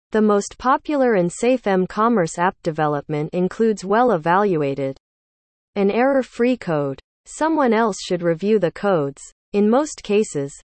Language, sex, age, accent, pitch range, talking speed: English, female, 40-59, American, 160-230 Hz, 125 wpm